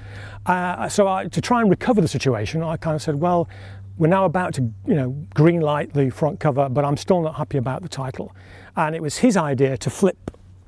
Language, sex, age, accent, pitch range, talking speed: English, male, 40-59, British, 105-165 Hz, 225 wpm